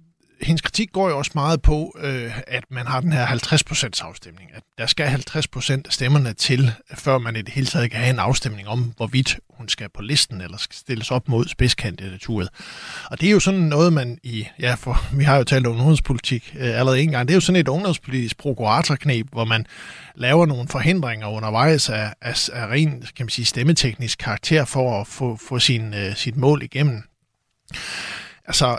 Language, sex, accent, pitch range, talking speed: Danish, male, native, 115-145 Hz, 200 wpm